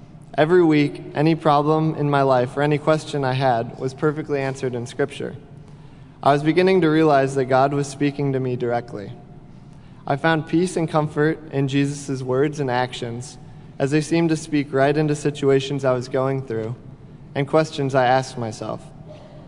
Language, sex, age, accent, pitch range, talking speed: English, male, 20-39, American, 135-155 Hz, 175 wpm